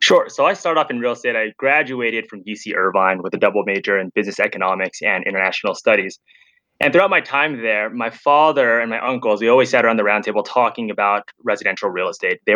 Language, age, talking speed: English, 20-39, 220 wpm